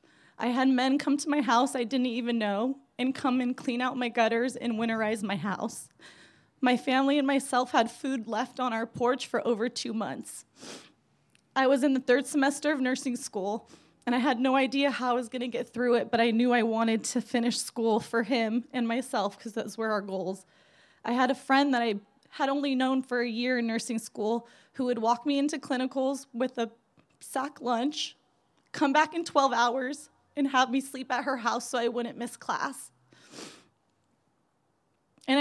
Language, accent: English, American